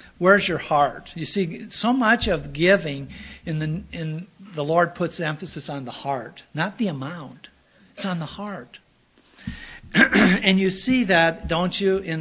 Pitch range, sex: 150-195 Hz, male